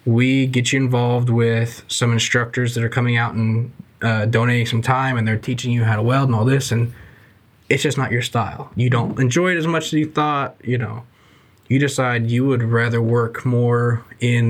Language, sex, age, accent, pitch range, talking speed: English, male, 20-39, American, 115-135 Hz, 210 wpm